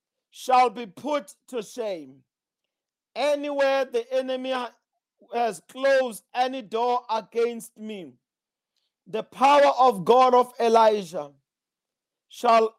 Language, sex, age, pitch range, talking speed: English, male, 40-59, 200-260 Hz, 100 wpm